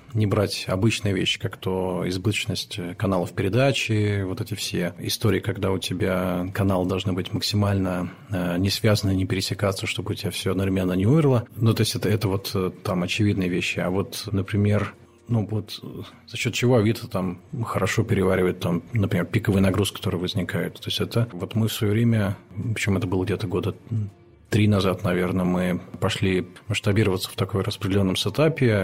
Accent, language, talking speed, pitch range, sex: native, Russian, 170 wpm, 95-110 Hz, male